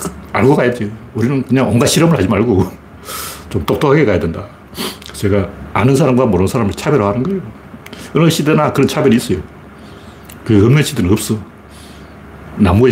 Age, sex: 60-79, male